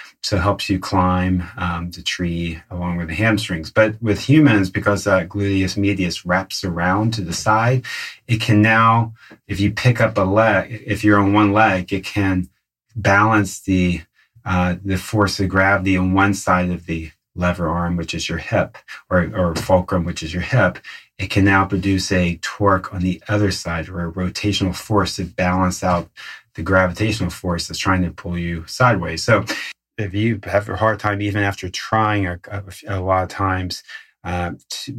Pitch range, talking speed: 90-105 Hz, 190 wpm